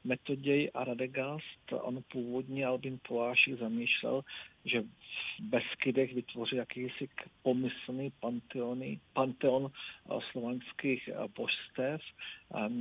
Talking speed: 85 wpm